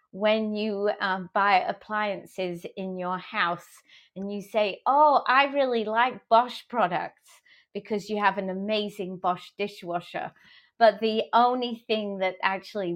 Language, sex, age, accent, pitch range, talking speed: English, female, 30-49, British, 185-230 Hz, 140 wpm